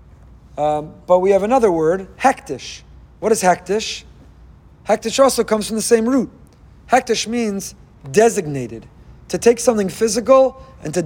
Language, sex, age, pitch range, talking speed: English, male, 40-59, 180-230 Hz, 140 wpm